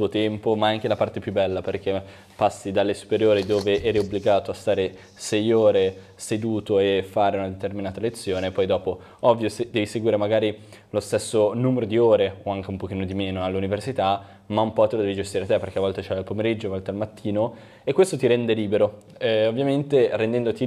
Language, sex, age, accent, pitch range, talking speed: Italian, male, 10-29, native, 100-115 Hz, 195 wpm